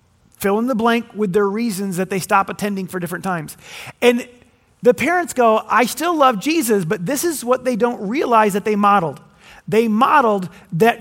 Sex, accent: male, American